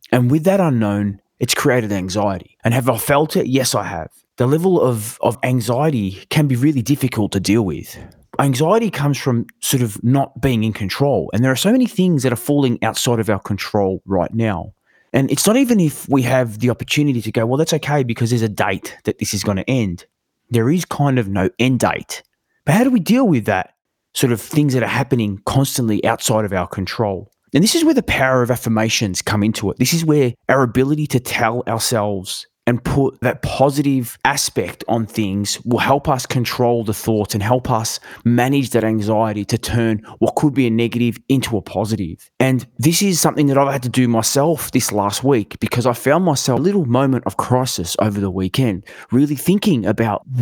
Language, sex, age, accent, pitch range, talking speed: English, male, 20-39, Australian, 110-140 Hz, 210 wpm